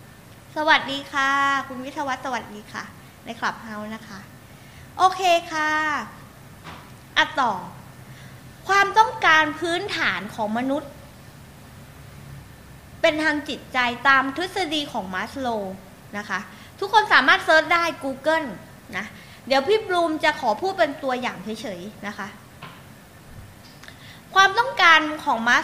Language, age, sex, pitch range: Thai, 20-39, female, 240-365 Hz